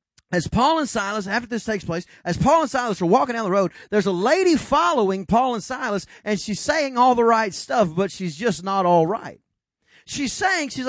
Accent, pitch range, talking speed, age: American, 190-265 Hz, 220 wpm, 30-49